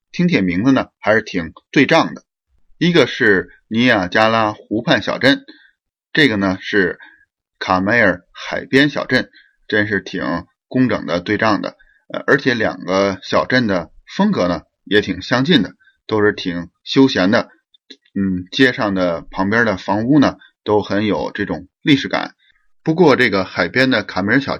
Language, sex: Chinese, male